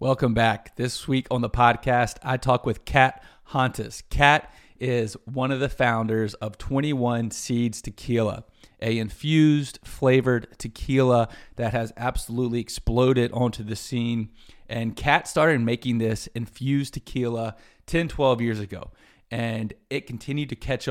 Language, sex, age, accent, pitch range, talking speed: English, male, 30-49, American, 110-130 Hz, 140 wpm